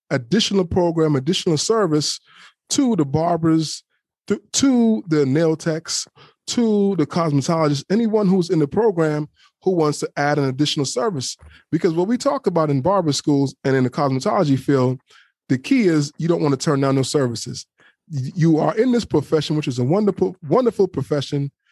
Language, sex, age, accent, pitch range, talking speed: English, male, 20-39, American, 145-185 Hz, 170 wpm